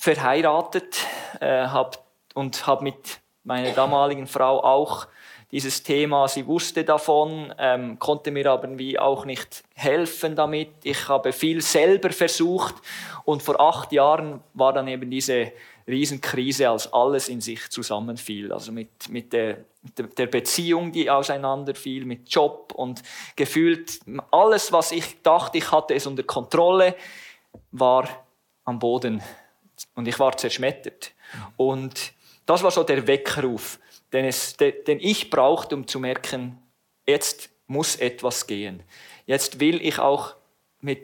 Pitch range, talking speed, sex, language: 125-155 Hz, 135 wpm, male, German